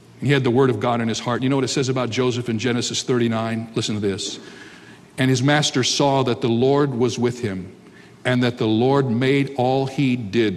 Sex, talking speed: male, 225 wpm